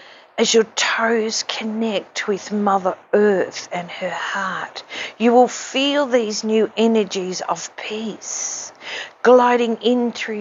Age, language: 40-59, English